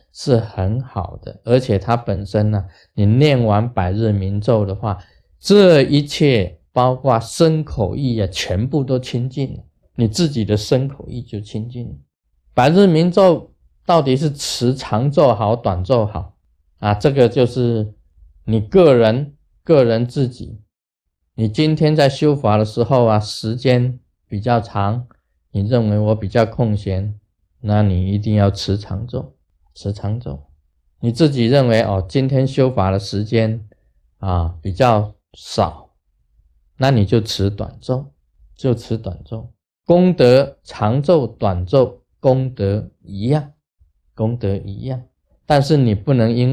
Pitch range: 95-130 Hz